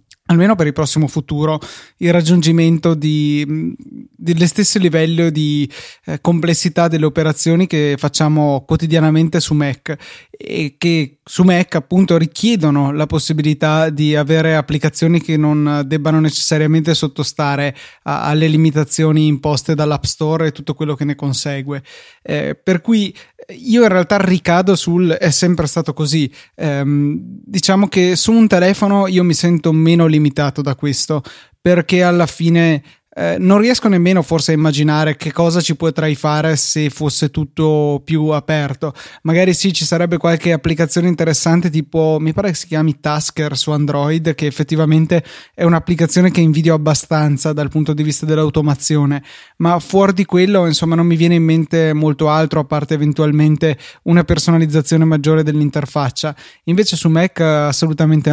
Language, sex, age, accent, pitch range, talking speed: Italian, male, 20-39, native, 150-170 Hz, 150 wpm